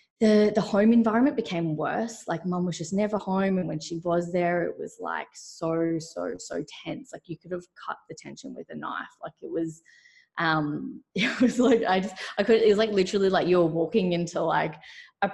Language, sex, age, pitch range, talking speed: English, female, 20-39, 160-205 Hz, 220 wpm